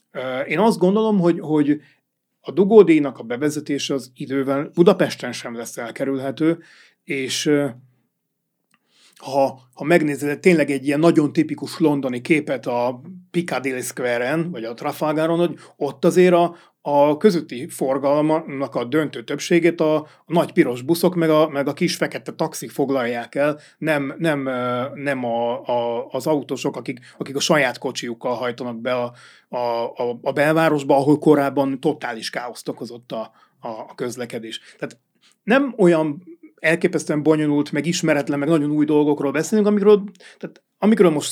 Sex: male